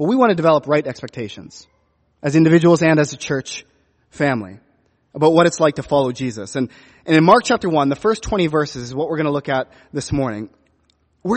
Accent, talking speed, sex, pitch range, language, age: American, 215 wpm, male, 140-190 Hz, English, 30-49